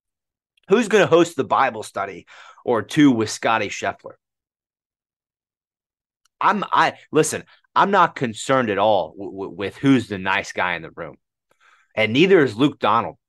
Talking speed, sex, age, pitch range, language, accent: 150 wpm, male, 30-49, 105-150 Hz, English, American